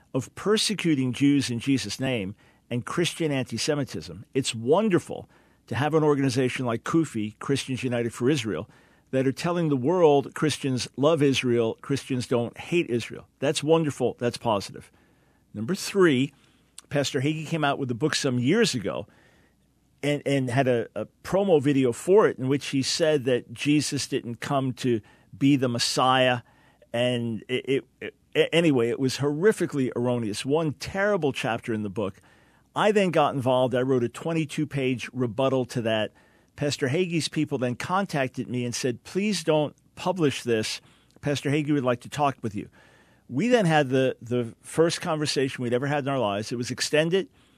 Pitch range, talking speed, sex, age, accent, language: 125-150 Hz, 165 wpm, male, 50-69, American, English